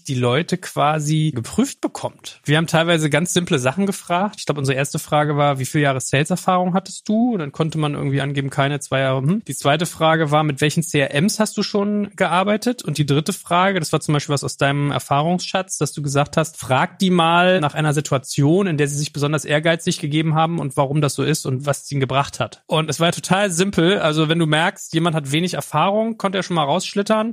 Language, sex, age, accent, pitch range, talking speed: German, male, 30-49, German, 145-180 Hz, 230 wpm